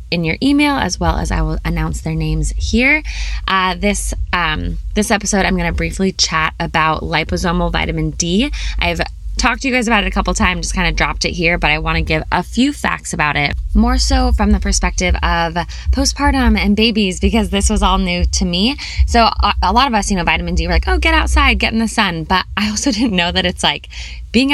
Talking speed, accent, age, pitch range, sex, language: 230 wpm, American, 10-29, 155-205 Hz, female, English